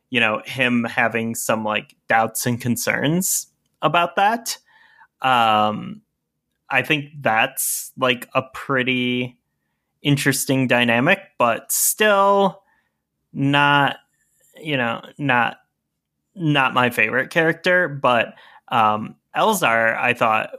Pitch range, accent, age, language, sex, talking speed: 110-140 Hz, American, 10-29, English, male, 100 wpm